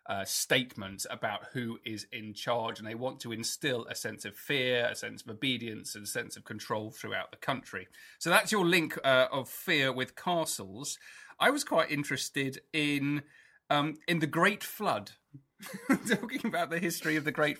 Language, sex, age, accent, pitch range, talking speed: English, male, 30-49, British, 120-160 Hz, 185 wpm